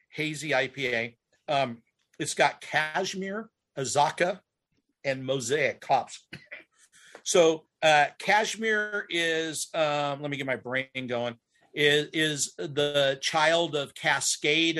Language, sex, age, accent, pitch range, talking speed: English, male, 50-69, American, 135-160 Hz, 110 wpm